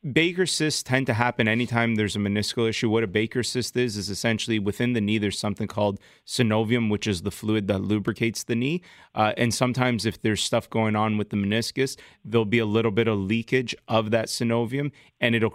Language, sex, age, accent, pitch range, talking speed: English, male, 30-49, American, 105-115 Hz, 210 wpm